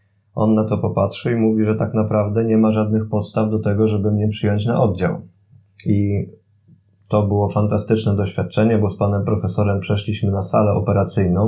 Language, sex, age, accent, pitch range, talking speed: Polish, male, 20-39, native, 100-115 Hz, 175 wpm